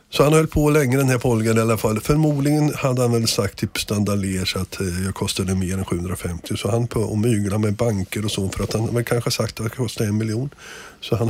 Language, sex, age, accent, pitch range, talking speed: Swedish, male, 50-69, native, 95-120 Hz, 250 wpm